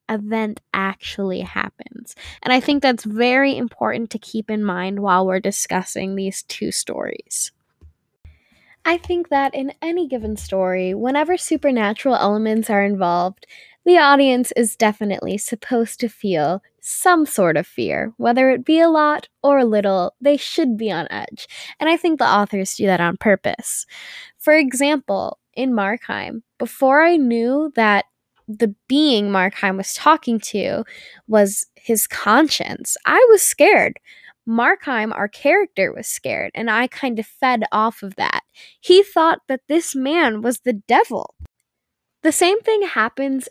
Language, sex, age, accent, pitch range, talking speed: English, female, 10-29, American, 205-275 Hz, 150 wpm